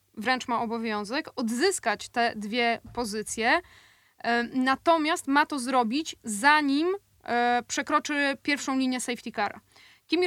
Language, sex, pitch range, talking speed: Polish, female, 230-285 Hz, 105 wpm